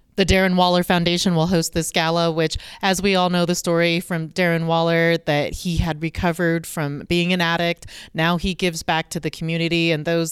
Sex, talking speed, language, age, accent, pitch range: female, 205 wpm, English, 30-49, American, 160-185 Hz